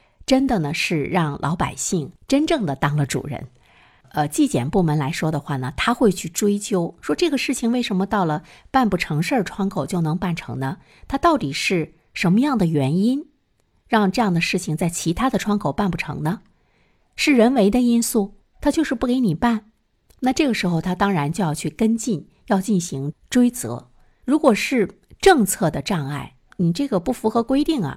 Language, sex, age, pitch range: Chinese, female, 50-69, 155-230 Hz